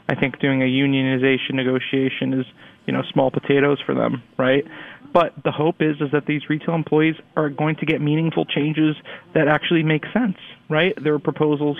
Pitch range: 135-150 Hz